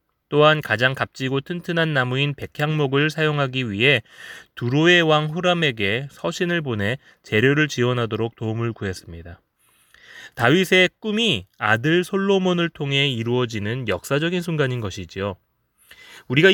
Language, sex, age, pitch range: Korean, male, 20-39, 115-175 Hz